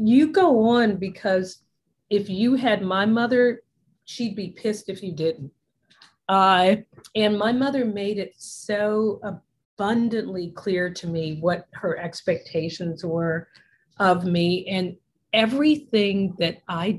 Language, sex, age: English, female, 40-59